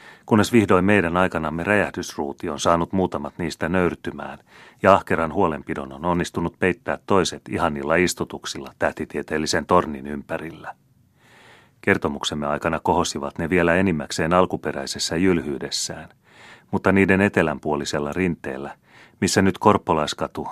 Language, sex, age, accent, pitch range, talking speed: Finnish, male, 30-49, native, 75-95 Hz, 110 wpm